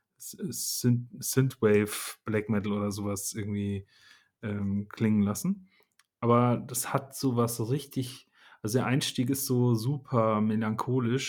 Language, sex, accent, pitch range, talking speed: German, male, German, 110-125 Hz, 115 wpm